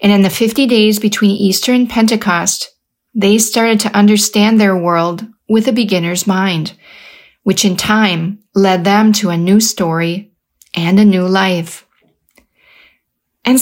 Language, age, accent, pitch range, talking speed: English, 40-59, American, 190-235 Hz, 145 wpm